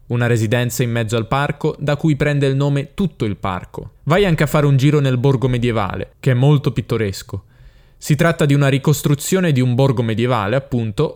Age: 20-39